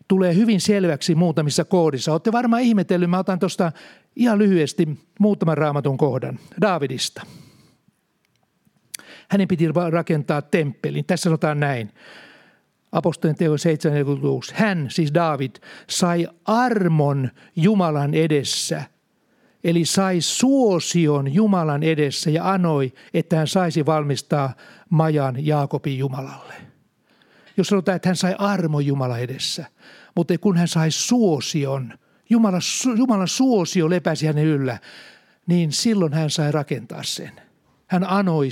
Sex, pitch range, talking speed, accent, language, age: male, 150-190 Hz, 115 wpm, native, Finnish, 60-79